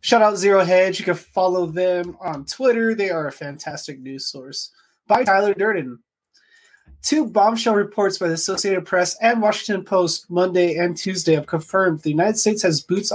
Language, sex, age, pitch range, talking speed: English, male, 20-39, 155-200 Hz, 180 wpm